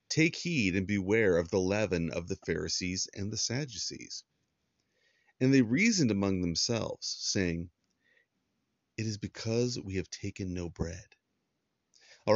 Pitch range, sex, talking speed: 90-120 Hz, male, 135 wpm